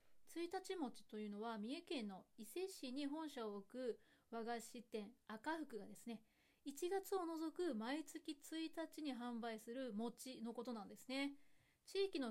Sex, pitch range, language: female, 220-310 Hz, Japanese